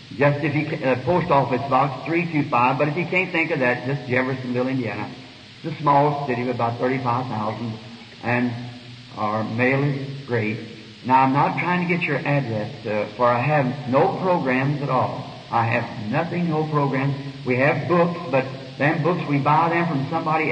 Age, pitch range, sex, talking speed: 60-79, 125-155 Hz, male, 170 wpm